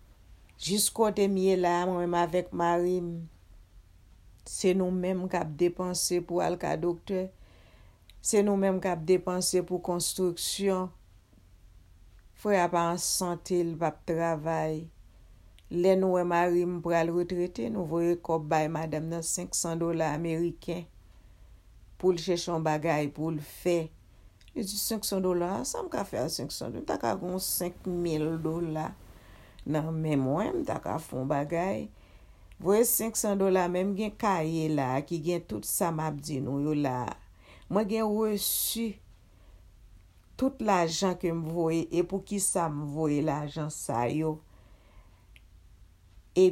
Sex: female